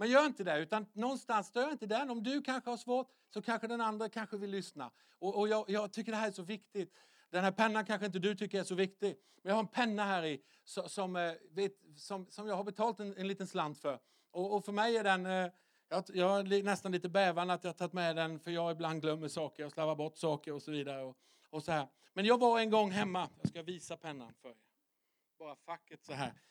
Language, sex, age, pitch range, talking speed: English, male, 50-69, 145-195 Hz, 250 wpm